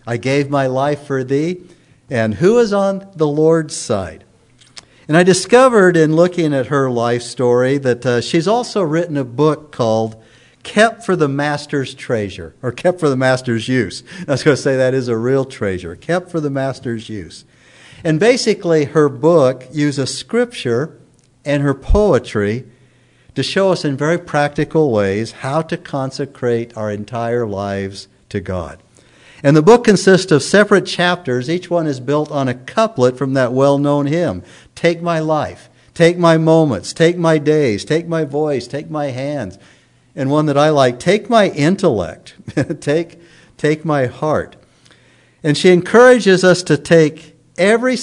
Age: 60-79